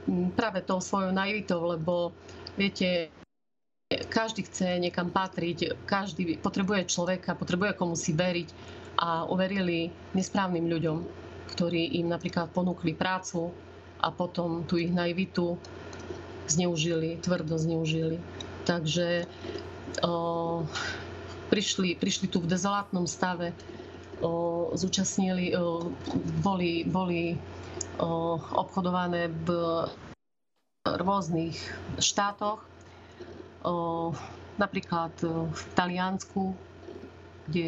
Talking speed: 90 wpm